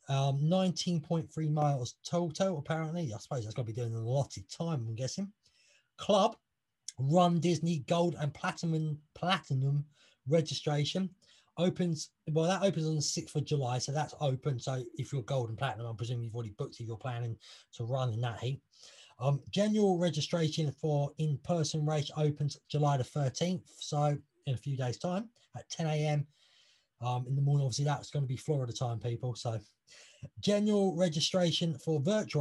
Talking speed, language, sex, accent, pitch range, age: 170 wpm, English, male, British, 130-160 Hz, 20-39